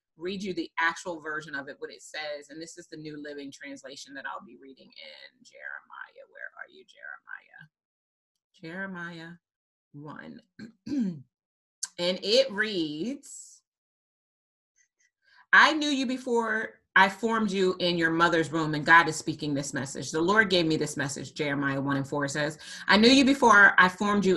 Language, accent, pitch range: English, American, 170-230 Hz